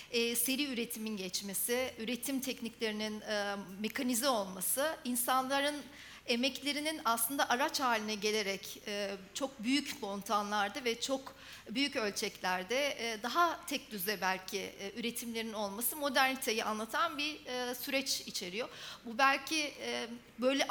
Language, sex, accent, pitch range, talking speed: Turkish, female, native, 220-270 Hz, 120 wpm